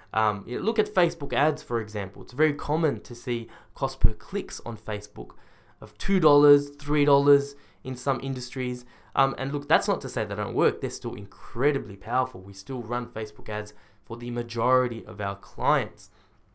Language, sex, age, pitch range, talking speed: English, male, 10-29, 110-145 Hz, 175 wpm